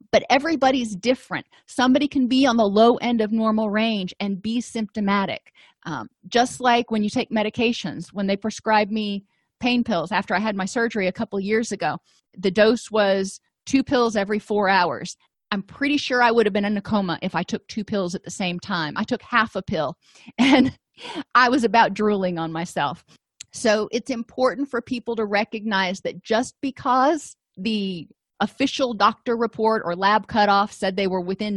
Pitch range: 190-235 Hz